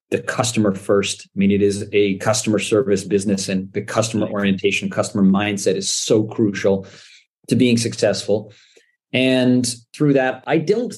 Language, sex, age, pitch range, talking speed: English, male, 40-59, 100-125 Hz, 155 wpm